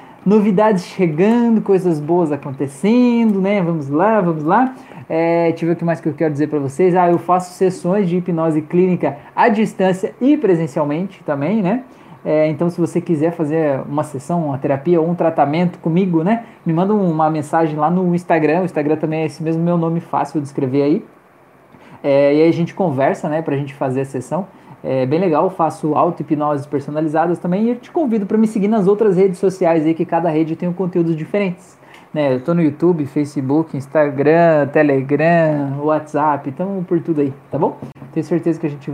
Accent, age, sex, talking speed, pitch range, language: Brazilian, 20-39, male, 195 wpm, 150-180 Hz, Portuguese